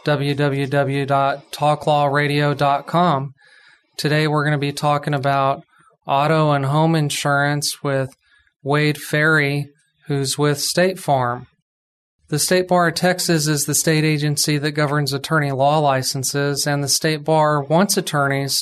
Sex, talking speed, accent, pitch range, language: male, 125 wpm, American, 140-155 Hz, English